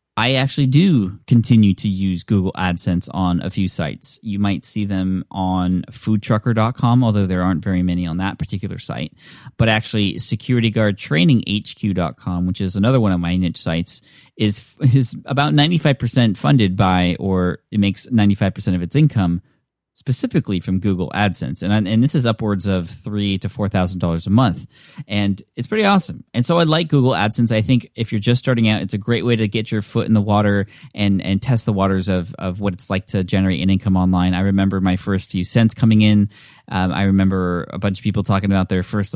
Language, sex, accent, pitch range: English, male, American, 95-115 Hz